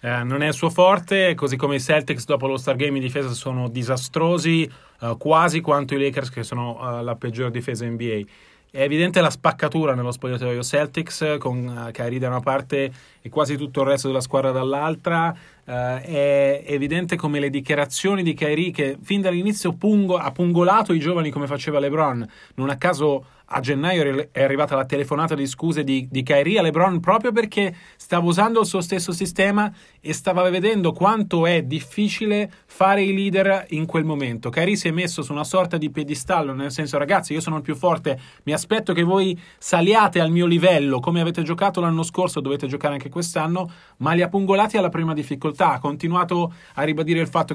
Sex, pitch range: male, 140-175 Hz